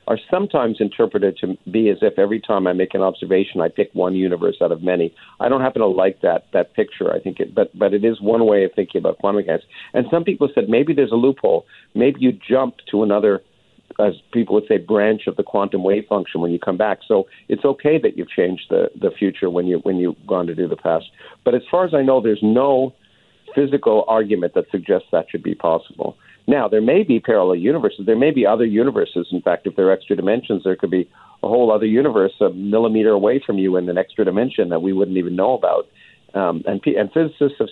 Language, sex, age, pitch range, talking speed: English, male, 50-69, 95-130 Hz, 235 wpm